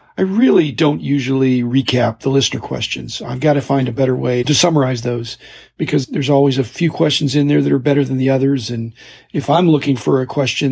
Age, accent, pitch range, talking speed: 40-59, American, 125-145 Hz, 220 wpm